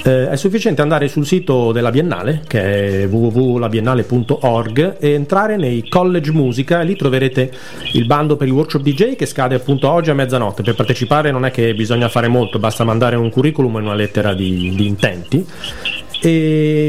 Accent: native